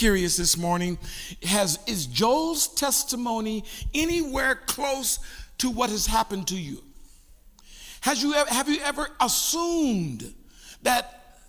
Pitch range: 200-275 Hz